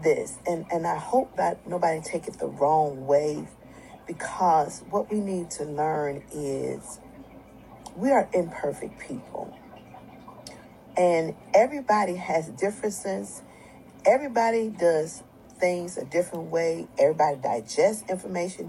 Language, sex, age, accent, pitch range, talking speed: English, female, 40-59, American, 155-205 Hz, 115 wpm